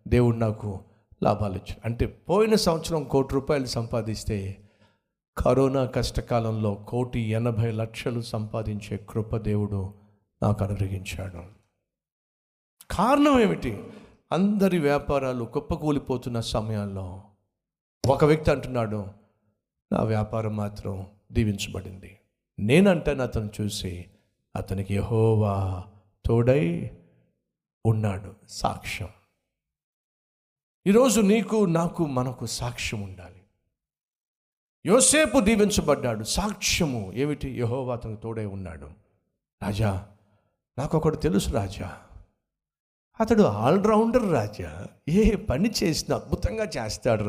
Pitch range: 100-135 Hz